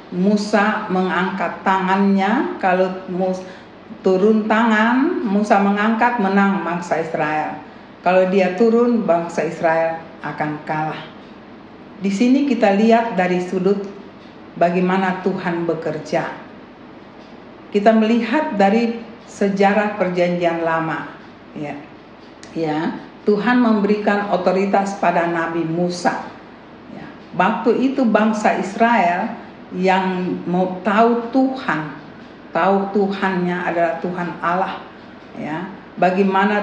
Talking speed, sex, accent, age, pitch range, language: 95 wpm, female, native, 50-69, 180-220 Hz, Indonesian